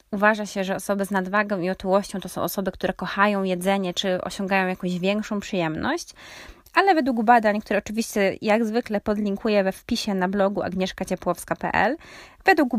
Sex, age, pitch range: female, 20-39, 190-225 Hz